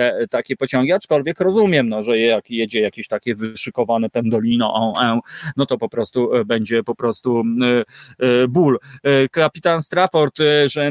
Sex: male